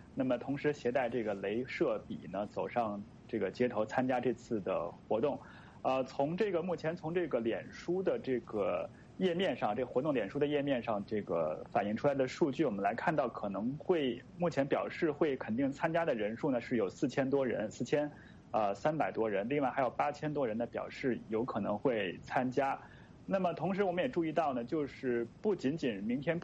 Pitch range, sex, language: 120-155 Hz, male, English